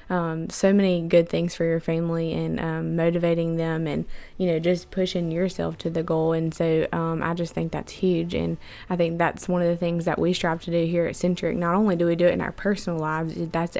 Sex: female